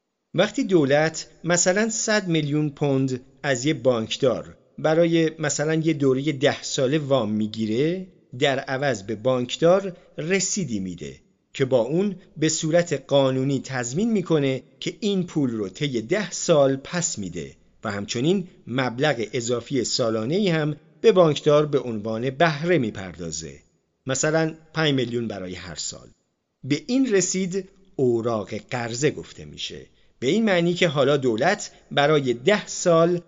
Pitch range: 130-175 Hz